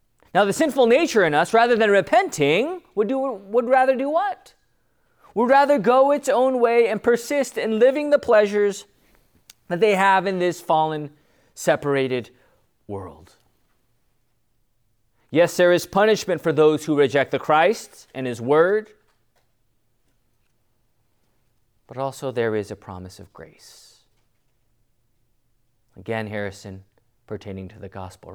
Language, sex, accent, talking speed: English, male, American, 130 wpm